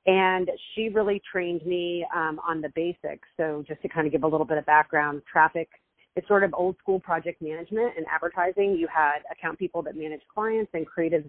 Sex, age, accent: female, 30-49, American